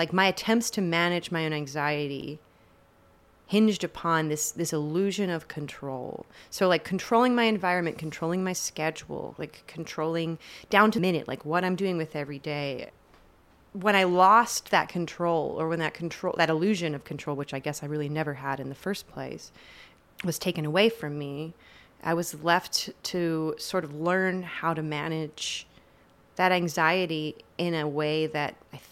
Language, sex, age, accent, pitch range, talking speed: English, female, 30-49, American, 150-185 Hz, 170 wpm